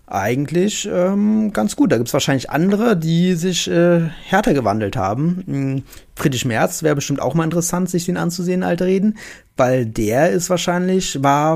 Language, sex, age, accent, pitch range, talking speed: German, male, 30-49, German, 125-175 Hz, 165 wpm